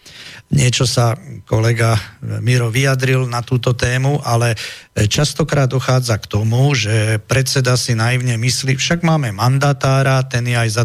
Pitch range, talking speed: 110-130 Hz, 140 wpm